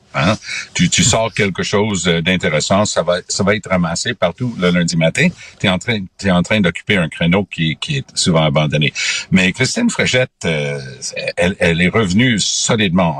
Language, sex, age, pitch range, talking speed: French, male, 60-79, 85-125 Hz, 180 wpm